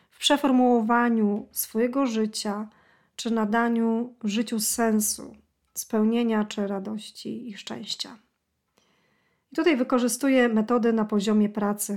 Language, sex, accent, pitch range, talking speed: Polish, female, native, 215-245 Hz, 95 wpm